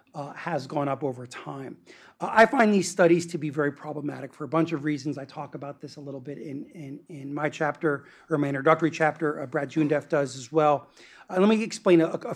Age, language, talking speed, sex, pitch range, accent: 40-59, English, 230 wpm, male, 150-195 Hz, American